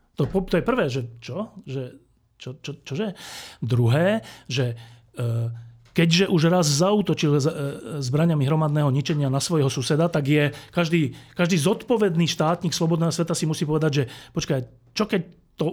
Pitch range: 135-175 Hz